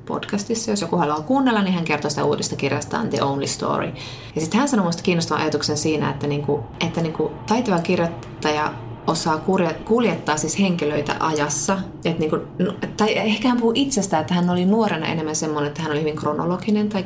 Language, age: Finnish, 30-49